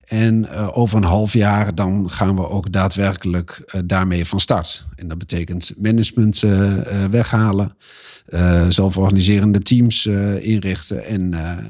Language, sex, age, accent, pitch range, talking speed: Dutch, male, 50-69, Dutch, 90-105 Hz, 105 wpm